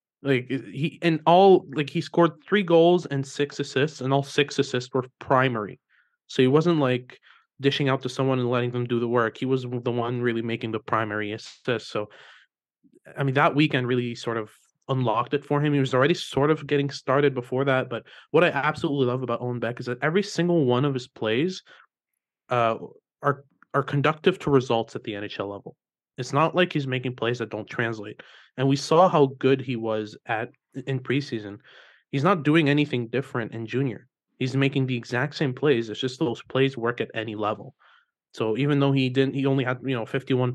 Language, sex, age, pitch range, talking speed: English, male, 20-39, 120-145 Hz, 205 wpm